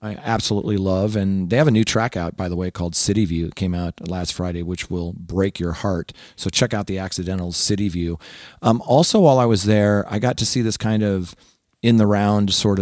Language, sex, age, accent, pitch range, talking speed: English, male, 40-59, American, 95-110 Hz, 225 wpm